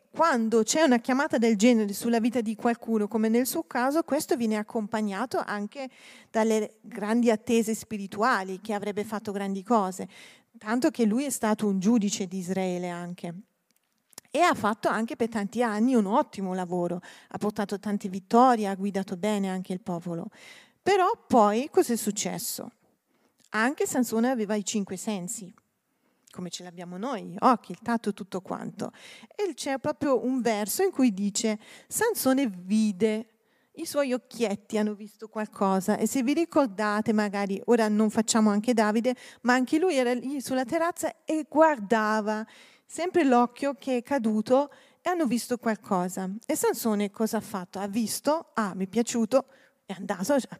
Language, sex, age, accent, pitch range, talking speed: Italian, female, 40-59, native, 205-255 Hz, 160 wpm